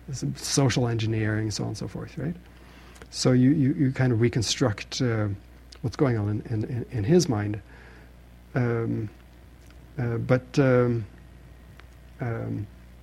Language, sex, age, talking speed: English, male, 60-79, 140 wpm